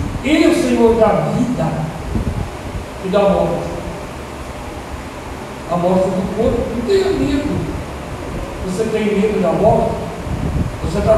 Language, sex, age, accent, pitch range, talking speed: Portuguese, male, 60-79, Brazilian, 195-290 Hz, 125 wpm